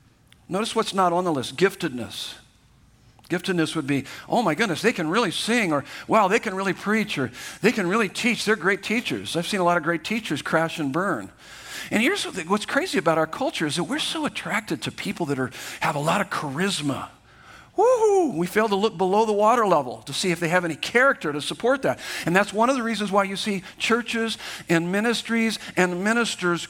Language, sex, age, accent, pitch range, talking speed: English, male, 50-69, American, 170-225 Hz, 210 wpm